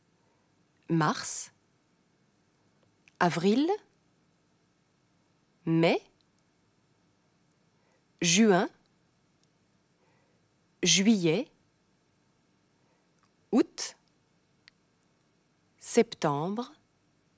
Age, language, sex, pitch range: 30-49, German, female, 155-210 Hz